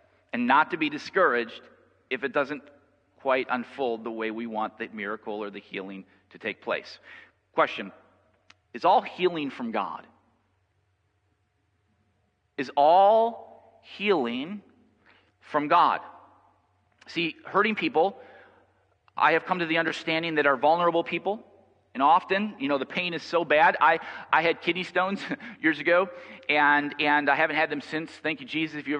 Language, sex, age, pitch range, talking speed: English, male, 40-59, 140-175 Hz, 155 wpm